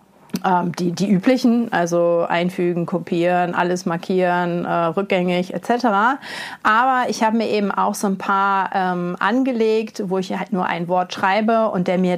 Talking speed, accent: 155 wpm, German